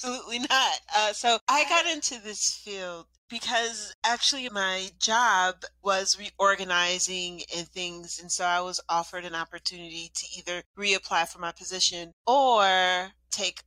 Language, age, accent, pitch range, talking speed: English, 30-49, American, 170-200 Hz, 140 wpm